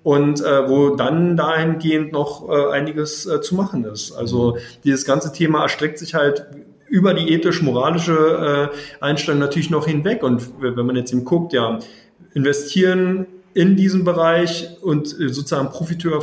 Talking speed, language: 155 wpm, German